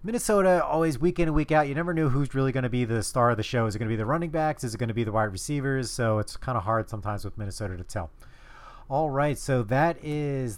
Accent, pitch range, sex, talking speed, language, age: American, 115-140 Hz, male, 290 wpm, English, 30-49